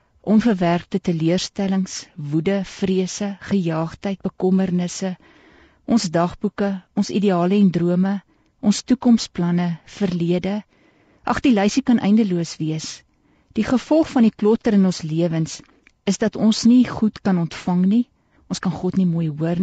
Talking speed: 130 wpm